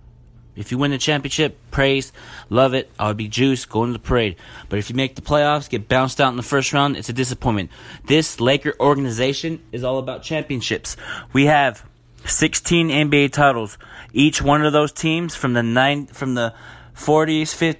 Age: 20-39